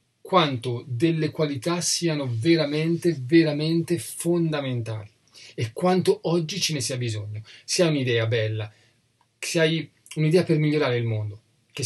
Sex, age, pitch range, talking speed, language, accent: male, 40-59, 120-155 Hz, 130 wpm, Italian, native